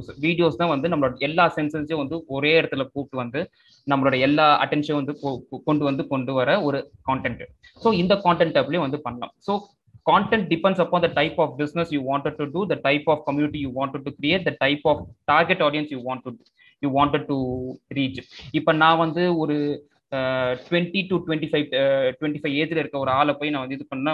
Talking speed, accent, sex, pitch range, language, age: 45 wpm, native, male, 140-170 Hz, Tamil, 20-39